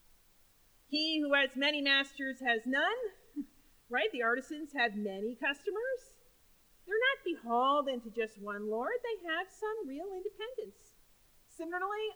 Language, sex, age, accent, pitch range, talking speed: English, female, 40-59, American, 235-310 Hz, 130 wpm